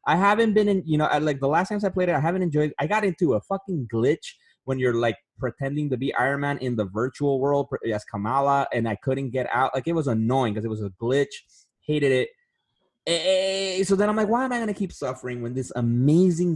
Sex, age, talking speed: male, 20-39, 245 wpm